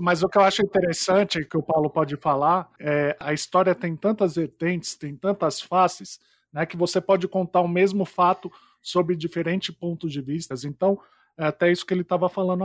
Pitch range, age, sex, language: 155-195 Hz, 20-39, male, Portuguese